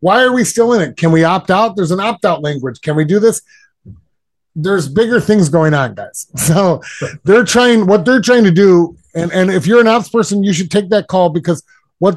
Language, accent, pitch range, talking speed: English, American, 145-185 Hz, 225 wpm